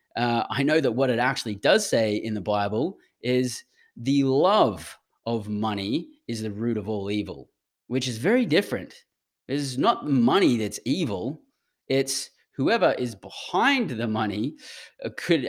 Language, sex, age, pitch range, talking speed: English, male, 20-39, 115-170 Hz, 150 wpm